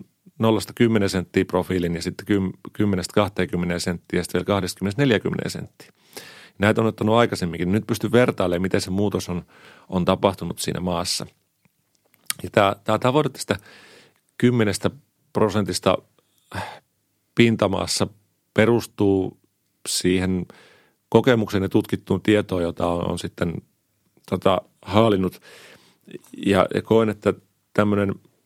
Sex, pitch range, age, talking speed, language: male, 95-110 Hz, 40-59, 110 wpm, Finnish